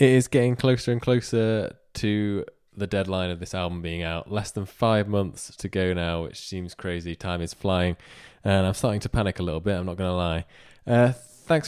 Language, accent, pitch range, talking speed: English, British, 90-105 Hz, 210 wpm